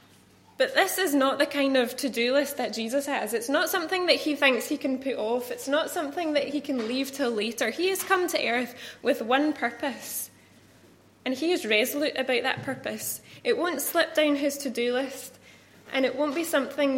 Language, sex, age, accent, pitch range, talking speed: English, female, 10-29, British, 230-285 Hz, 205 wpm